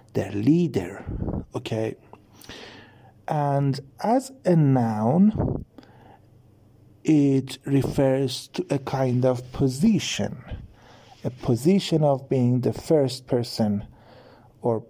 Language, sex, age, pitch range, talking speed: English, male, 50-69, 115-150 Hz, 90 wpm